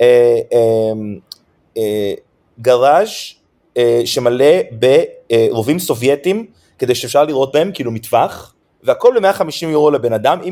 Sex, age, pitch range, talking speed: male, 30-49, 120-195 Hz, 90 wpm